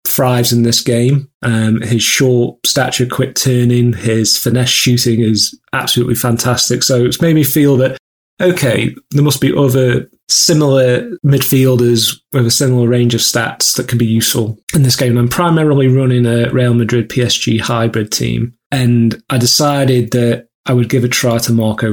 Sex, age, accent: male, 30-49, British